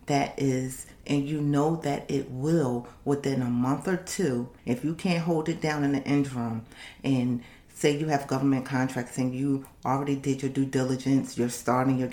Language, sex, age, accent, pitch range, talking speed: English, female, 40-59, American, 125-145 Hz, 190 wpm